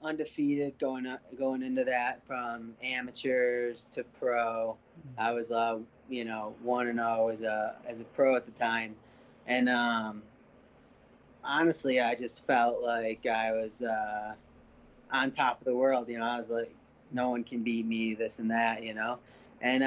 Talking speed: 170 wpm